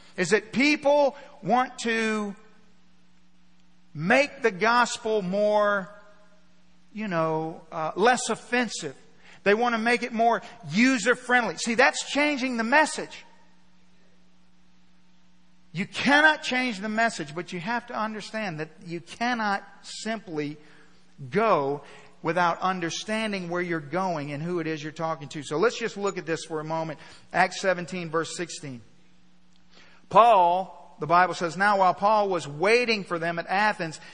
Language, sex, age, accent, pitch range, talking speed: English, male, 50-69, American, 170-230 Hz, 140 wpm